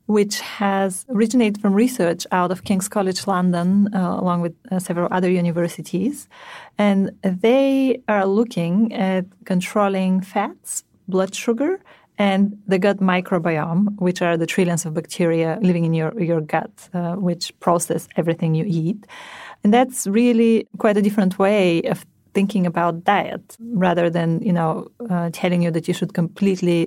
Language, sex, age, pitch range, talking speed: English, female, 30-49, 170-205 Hz, 155 wpm